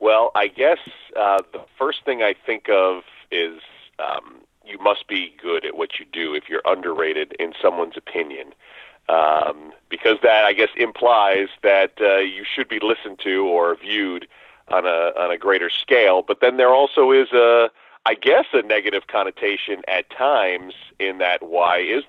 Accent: American